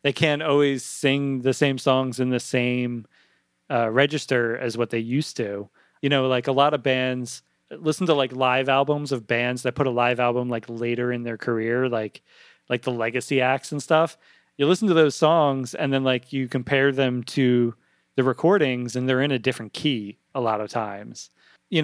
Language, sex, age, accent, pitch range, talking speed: English, male, 30-49, American, 120-145 Hz, 200 wpm